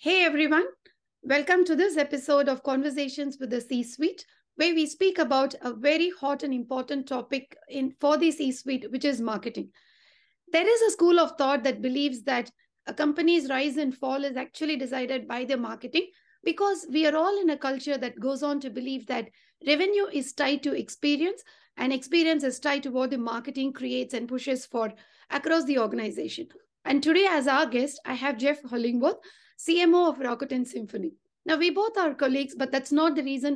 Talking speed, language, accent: 190 wpm, English, Indian